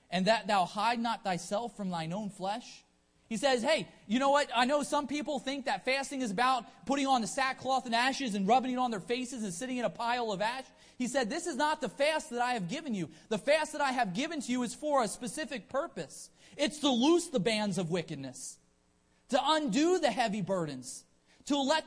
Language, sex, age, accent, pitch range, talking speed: English, male, 30-49, American, 175-260 Hz, 230 wpm